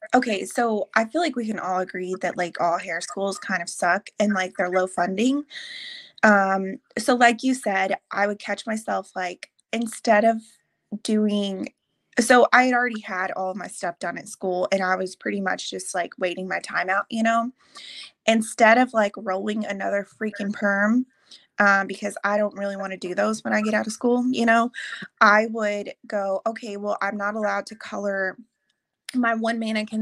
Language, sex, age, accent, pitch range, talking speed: English, female, 20-39, American, 200-235 Hz, 190 wpm